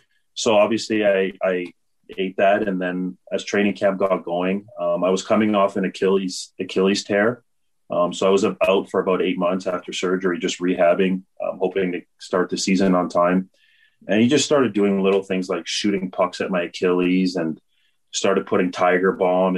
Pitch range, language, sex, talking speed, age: 90-100 Hz, English, male, 185 wpm, 30-49